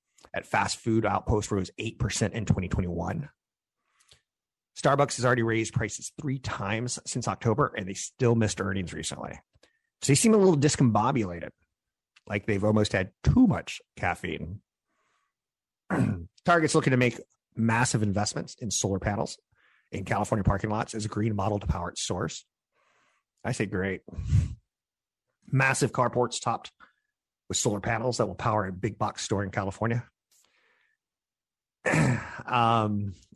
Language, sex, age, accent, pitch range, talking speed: English, male, 30-49, American, 100-125 Hz, 135 wpm